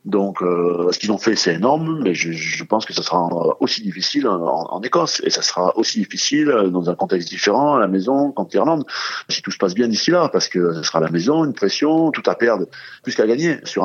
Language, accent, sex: French, French, male